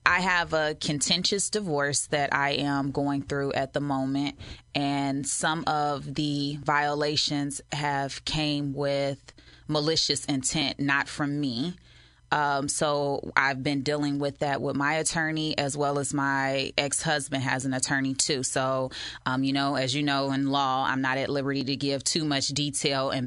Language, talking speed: English, 165 wpm